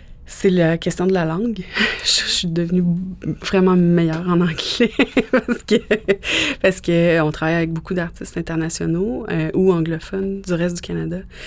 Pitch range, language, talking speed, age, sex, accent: 165-190 Hz, English, 160 wpm, 30-49, female, Canadian